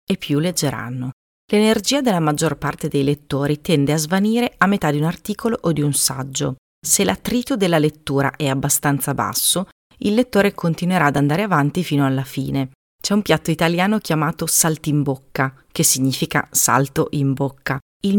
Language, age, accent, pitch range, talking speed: Italian, 30-49, native, 140-190 Hz, 170 wpm